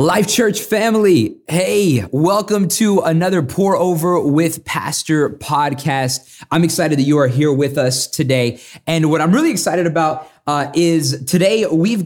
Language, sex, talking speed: English, male, 155 wpm